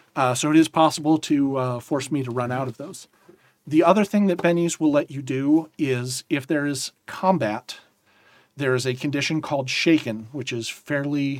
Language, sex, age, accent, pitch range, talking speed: English, male, 40-59, American, 125-155 Hz, 195 wpm